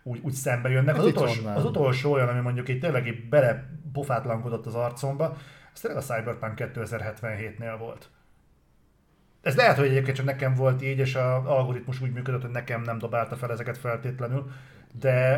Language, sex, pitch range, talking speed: Hungarian, male, 120-145 Hz, 170 wpm